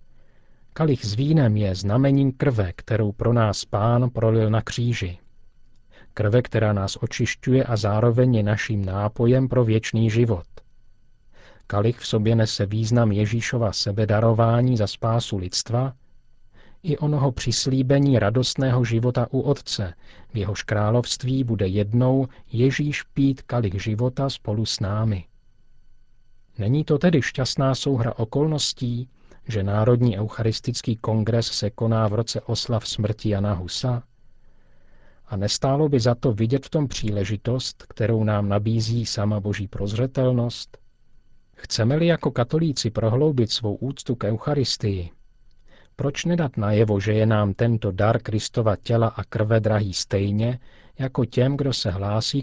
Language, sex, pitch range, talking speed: Czech, male, 105-125 Hz, 130 wpm